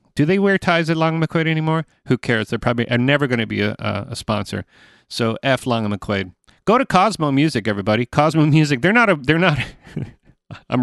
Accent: American